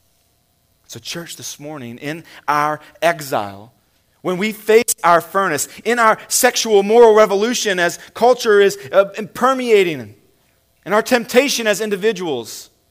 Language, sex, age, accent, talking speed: English, male, 30-49, American, 120 wpm